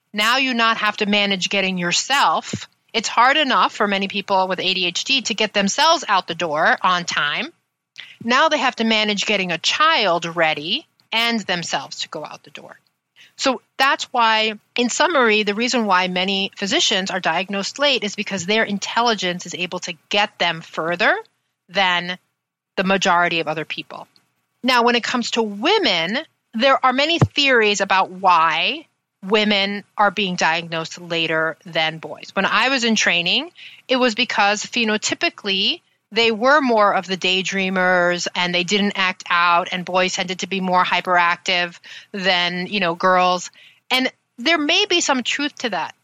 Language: English